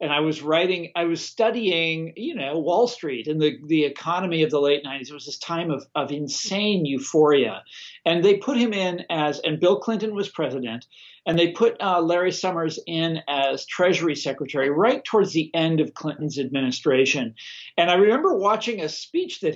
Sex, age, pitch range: male, 50-69, 150-195 Hz